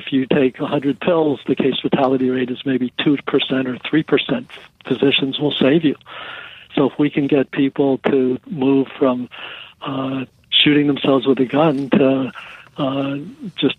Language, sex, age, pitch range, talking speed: English, male, 60-79, 130-145 Hz, 155 wpm